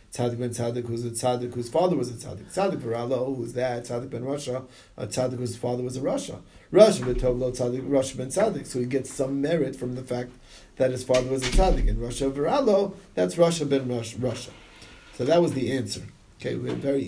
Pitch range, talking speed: 130-175 Hz, 205 wpm